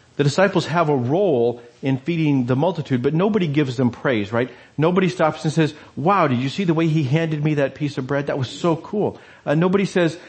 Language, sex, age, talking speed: English, male, 40-59, 225 wpm